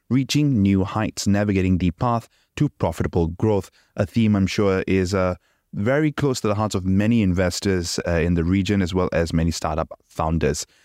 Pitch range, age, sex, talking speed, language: 90-110 Hz, 20-39, male, 185 wpm, English